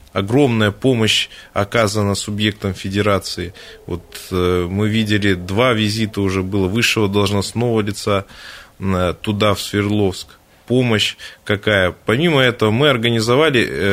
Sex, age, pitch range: male, 20-39, 95-115 Hz